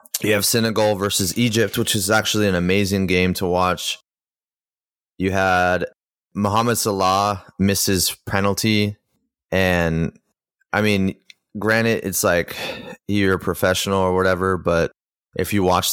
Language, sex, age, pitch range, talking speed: English, male, 20-39, 85-100 Hz, 130 wpm